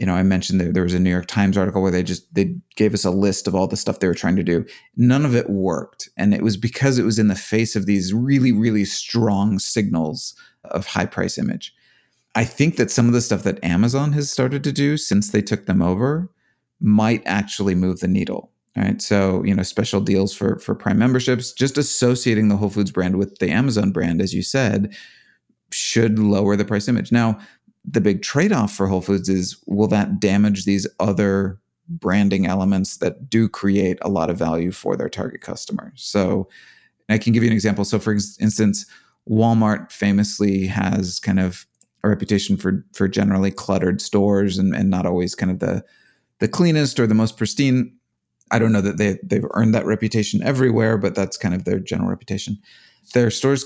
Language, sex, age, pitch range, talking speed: English, male, 30-49, 95-115 Hz, 205 wpm